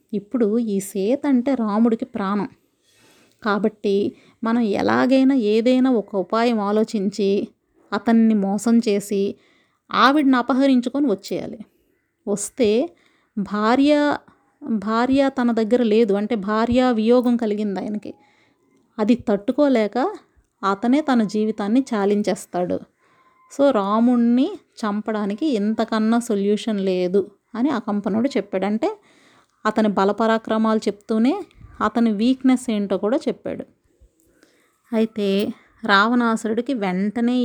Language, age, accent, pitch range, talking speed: Telugu, 30-49, native, 210-250 Hz, 90 wpm